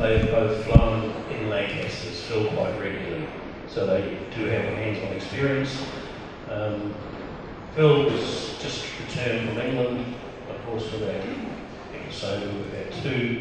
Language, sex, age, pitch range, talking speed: English, male, 40-59, 110-140 Hz, 135 wpm